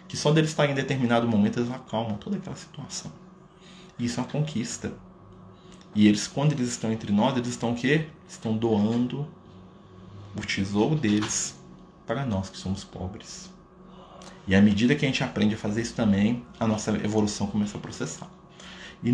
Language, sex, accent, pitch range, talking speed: Portuguese, male, Brazilian, 110-180 Hz, 175 wpm